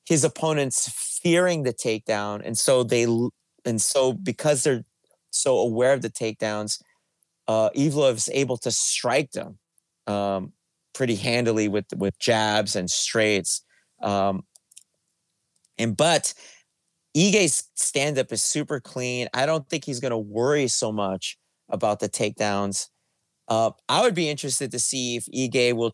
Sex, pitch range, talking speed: male, 105-135 Hz, 145 wpm